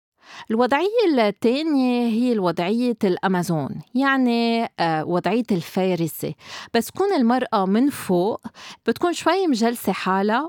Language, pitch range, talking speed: Arabic, 185-245 Hz, 95 wpm